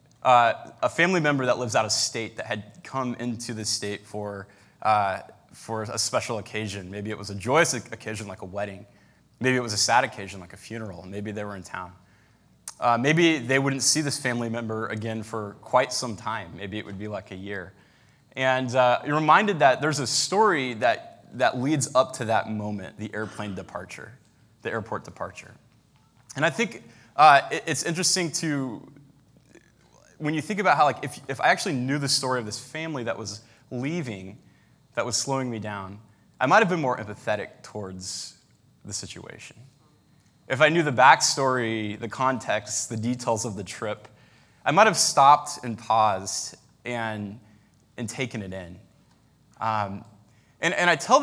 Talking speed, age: 180 wpm, 20-39